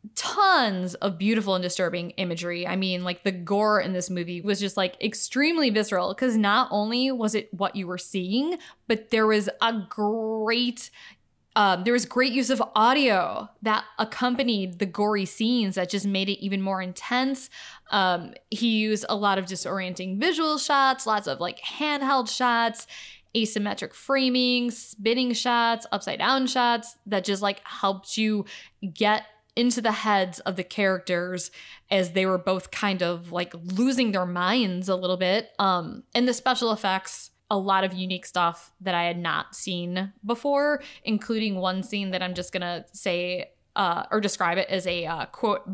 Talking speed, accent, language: 170 wpm, American, English